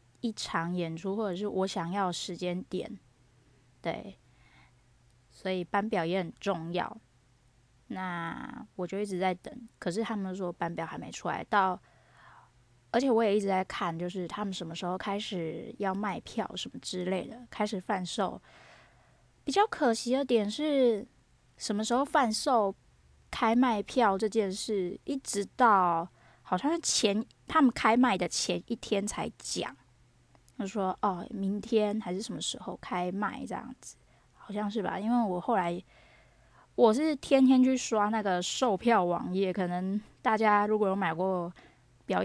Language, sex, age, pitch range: Chinese, female, 20-39, 180-225 Hz